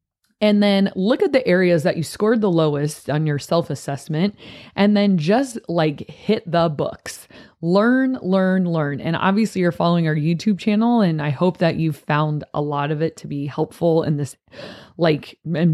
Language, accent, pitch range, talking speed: English, American, 155-190 Hz, 185 wpm